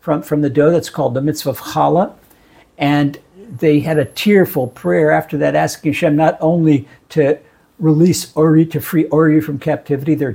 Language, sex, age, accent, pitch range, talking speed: English, male, 60-79, American, 145-180 Hz, 175 wpm